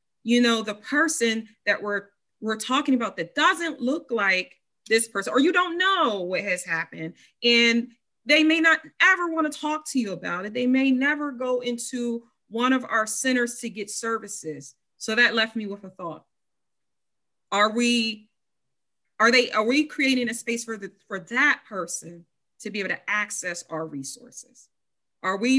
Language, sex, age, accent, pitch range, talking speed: English, female, 30-49, American, 190-245 Hz, 180 wpm